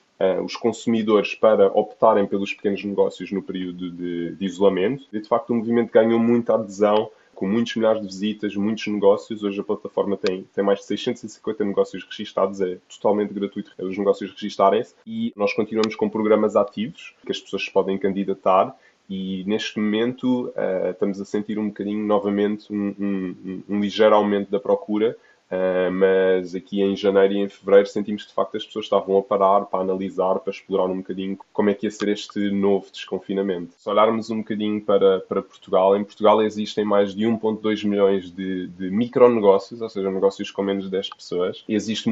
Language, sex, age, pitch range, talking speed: Portuguese, male, 20-39, 95-110 Hz, 190 wpm